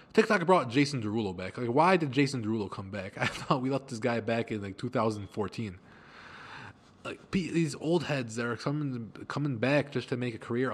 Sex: male